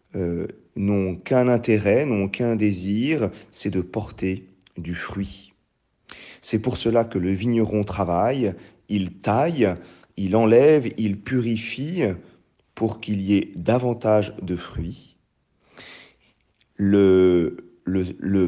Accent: French